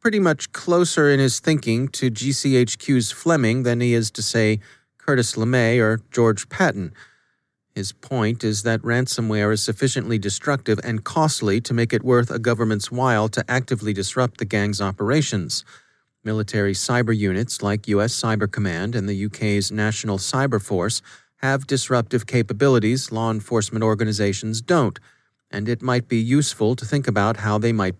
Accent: American